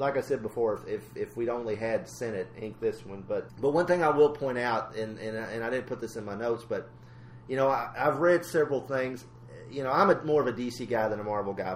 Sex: male